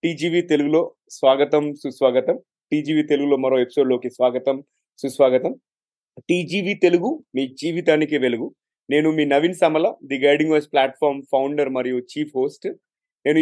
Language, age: Telugu, 30-49